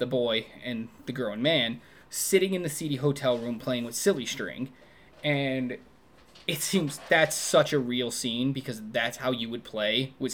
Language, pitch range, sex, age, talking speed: English, 120-145 Hz, male, 20-39, 185 wpm